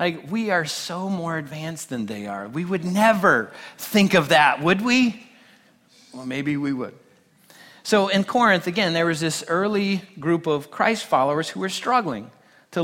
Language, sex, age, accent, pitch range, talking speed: English, male, 40-59, American, 150-195 Hz, 175 wpm